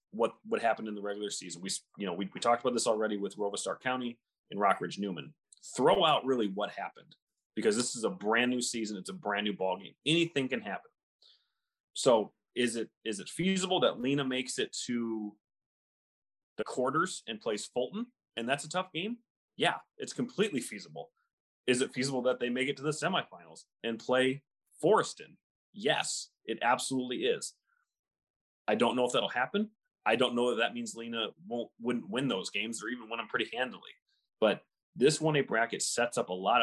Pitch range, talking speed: 115-165 Hz, 190 wpm